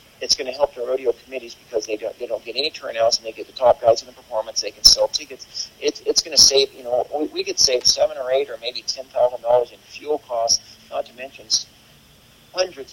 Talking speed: 230 wpm